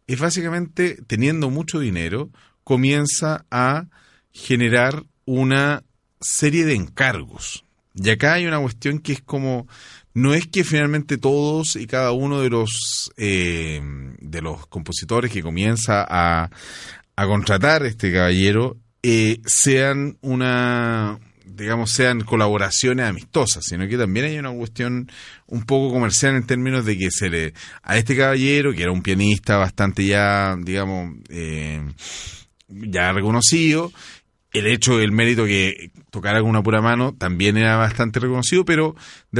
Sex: male